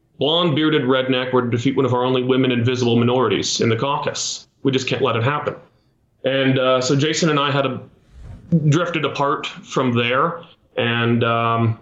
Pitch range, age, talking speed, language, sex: 115-135 Hz, 30-49, 180 wpm, English, male